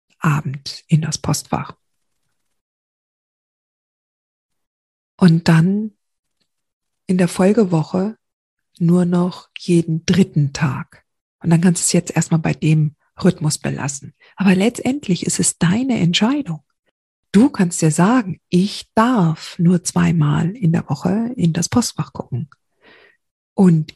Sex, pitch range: female, 155-225 Hz